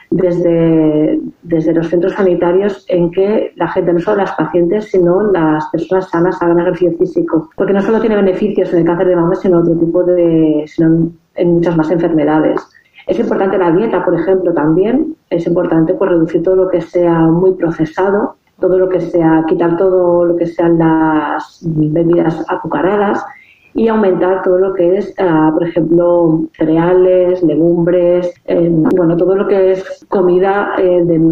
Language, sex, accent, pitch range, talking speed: Spanish, female, Spanish, 170-195 Hz, 165 wpm